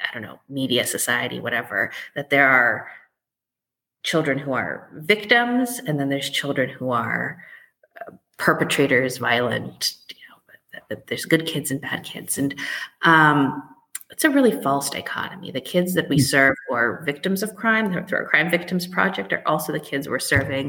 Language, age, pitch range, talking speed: English, 30-49, 140-185 Hz, 175 wpm